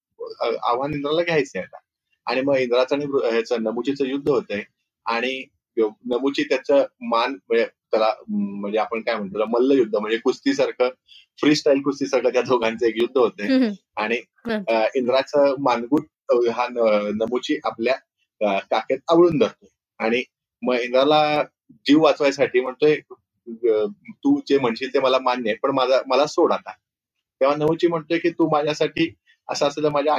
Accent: native